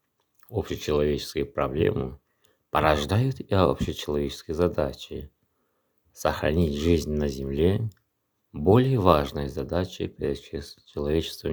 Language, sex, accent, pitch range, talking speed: Russian, male, native, 70-90 Hz, 80 wpm